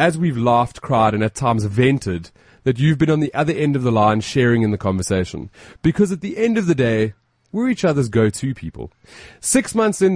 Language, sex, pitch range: English, male, 115-165 Hz